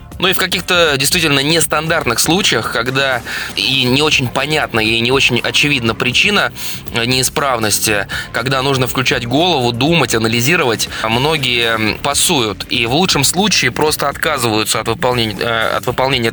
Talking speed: 130 wpm